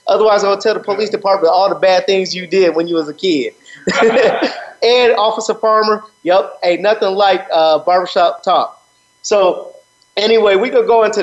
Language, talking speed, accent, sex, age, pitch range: English, 185 wpm, American, male, 30-49, 155-205 Hz